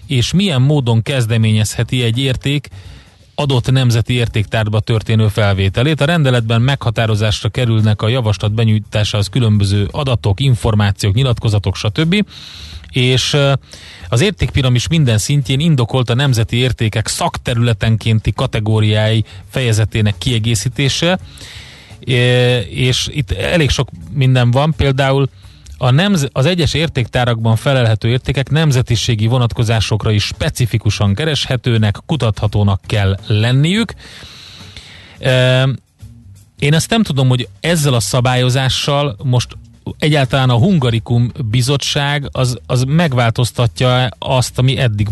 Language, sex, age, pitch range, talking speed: Hungarian, male, 30-49, 110-135 Hz, 100 wpm